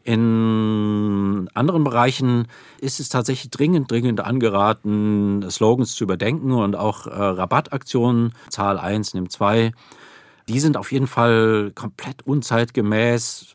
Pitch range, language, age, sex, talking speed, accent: 105-125 Hz, German, 40-59, male, 120 wpm, German